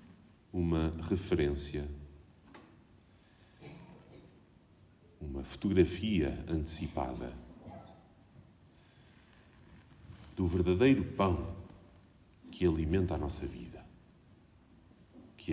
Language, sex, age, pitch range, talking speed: Portuguese, male, 50-69, 85-105 Hz, 55 wpm